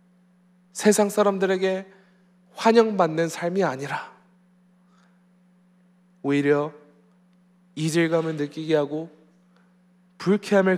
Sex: male